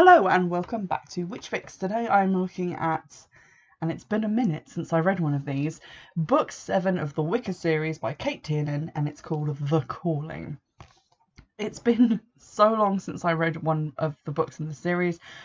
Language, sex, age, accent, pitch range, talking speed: English, female, 20-39, British, 155-185 Hz, 195 wpm